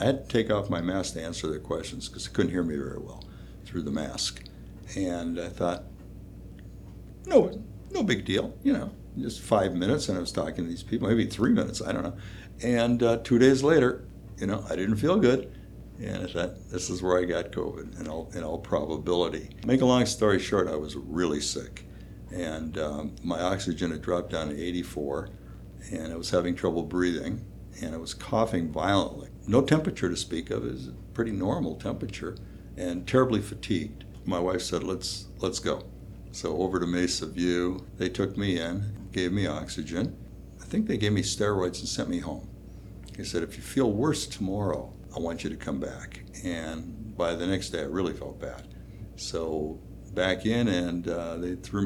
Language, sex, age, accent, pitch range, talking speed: English, male, 60-79, American, 85-105 Hz, 200 wpm